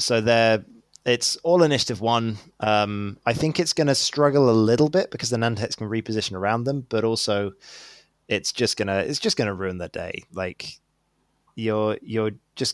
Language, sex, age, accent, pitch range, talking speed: English, male, 20-39, British, 100-130 Hz, 175 wpm